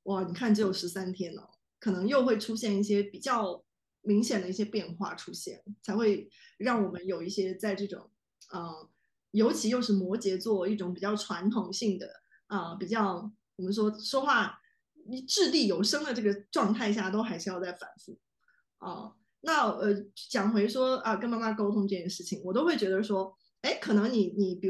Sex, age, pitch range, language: female, 20-39, 200-260 Hz, Chinese